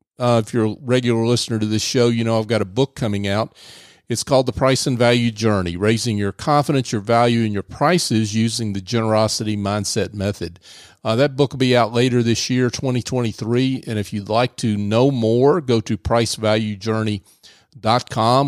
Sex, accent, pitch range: male, American, 105-125 Hz